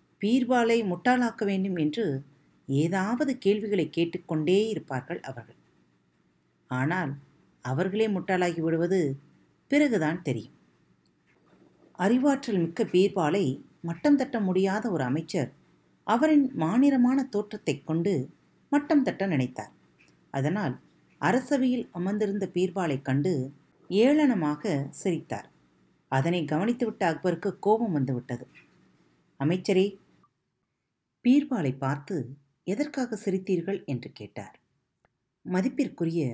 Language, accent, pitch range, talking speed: Tamil, native, 135-205 Hz, 85 wpm